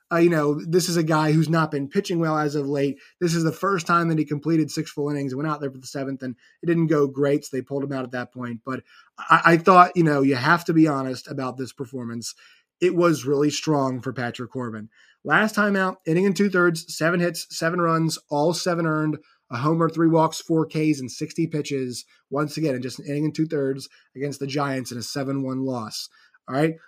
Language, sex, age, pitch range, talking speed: English, male, 20-39, 140-170 Hz, 240 wpm